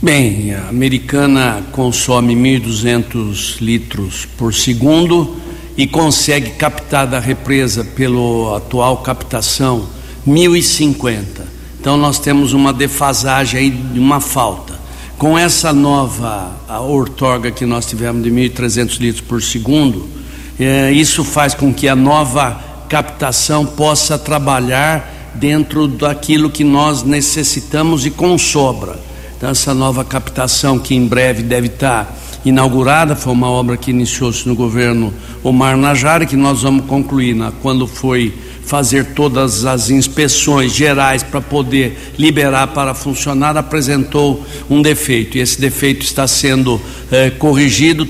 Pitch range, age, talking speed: 125-145 Hz, 60-79, 125 wpm